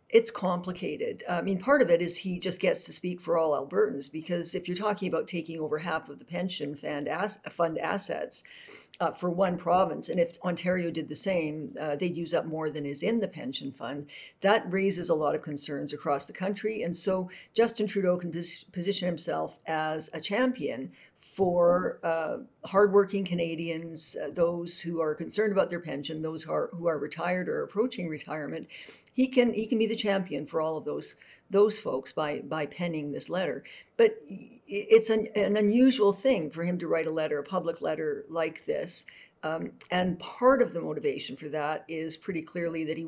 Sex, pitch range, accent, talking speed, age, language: female, 160-195 Hz, American, 185 wpm, 60-79, English